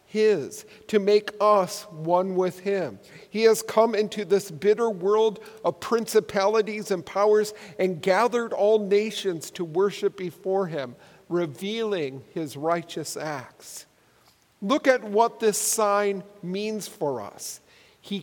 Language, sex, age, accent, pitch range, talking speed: English, male, 50-69, American, 170-215 Hz, 130 wpm